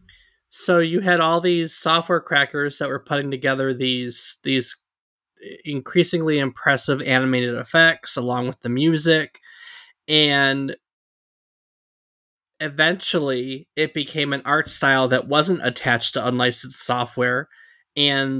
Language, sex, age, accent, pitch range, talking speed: English, male, 30-49, American, 130-160 Hz, 115 wpm